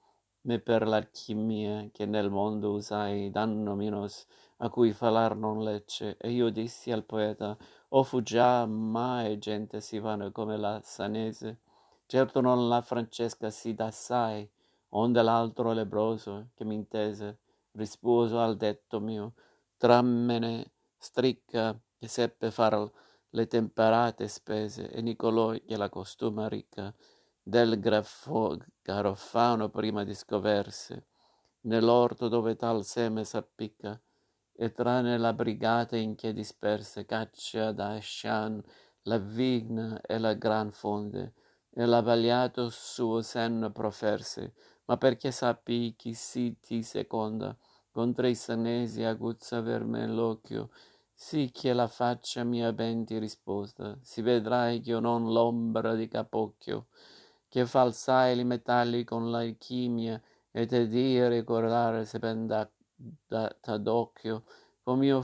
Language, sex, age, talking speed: Italian, male, 50-69, 125 wpm